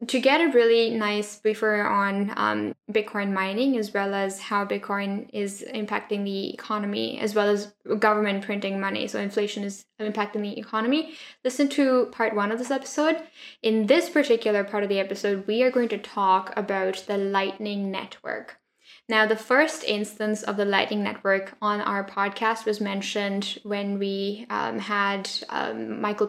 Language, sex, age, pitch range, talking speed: English, female, 10-29, 200-230 Hz, 165 wpm